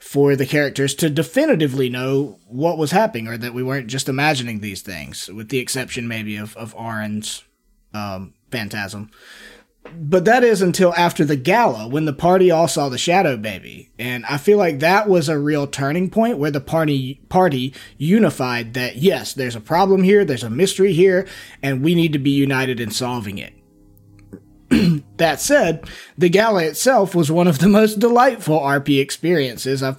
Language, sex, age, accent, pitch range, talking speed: English, male, 30-49, American, 120-170 Hz, 180 wpm